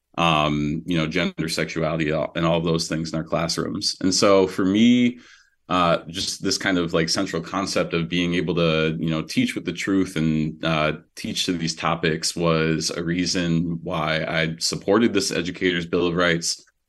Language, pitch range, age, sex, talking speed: English, 80-95 Hz, 30-49, male, 180 wpm